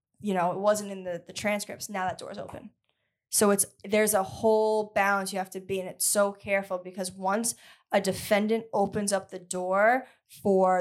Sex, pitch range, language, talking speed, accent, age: female, 185-210 Hz, English, 200 wpm, American, 10-29